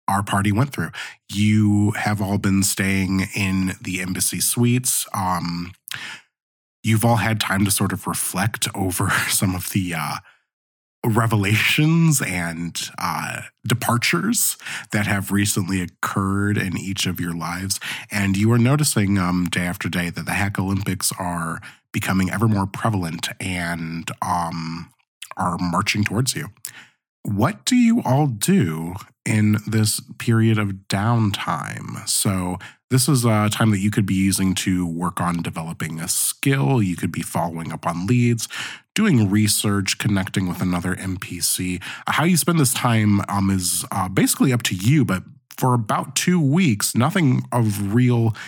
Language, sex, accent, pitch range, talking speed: English, male, American, 95-120 Hz, 150 wpm